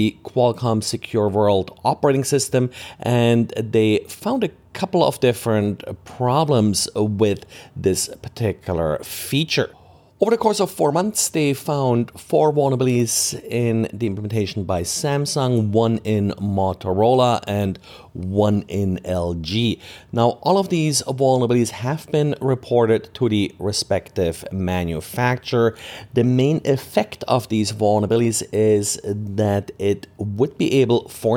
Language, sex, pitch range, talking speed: English, male, 100-125 Hz, 120 wpm